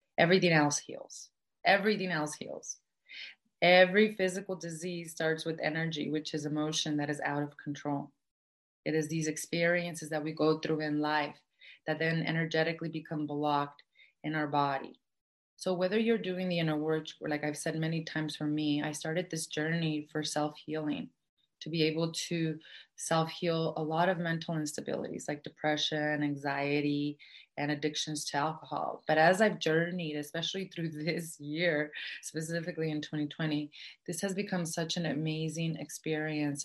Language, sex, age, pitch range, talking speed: English, female, 30-49, 150-170 Hz, 155 wpm